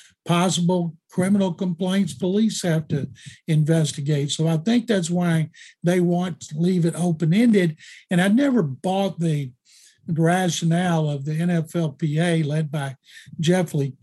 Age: 60-79